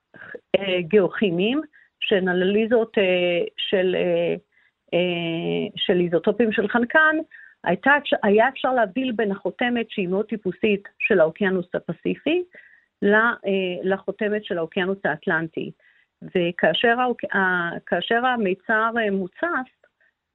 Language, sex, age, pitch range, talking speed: Hebrew, female, 40-59, 180-225 Hz, 80 wpm